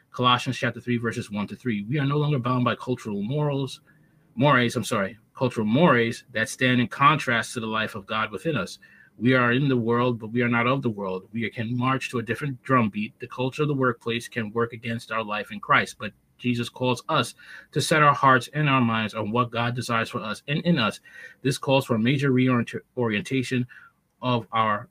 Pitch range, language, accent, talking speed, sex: 115-130 Hz, English, American, 215 wpm, male